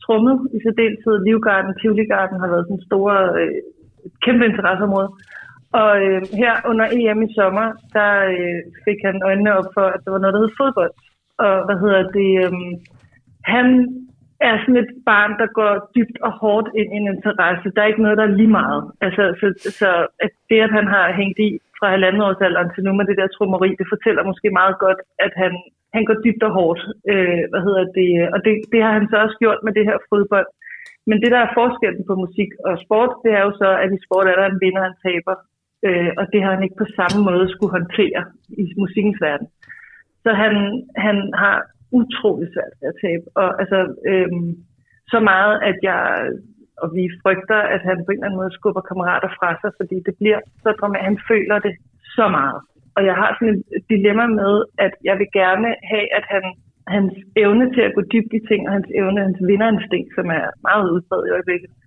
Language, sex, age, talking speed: Danish, female, 30-49, 210 wpm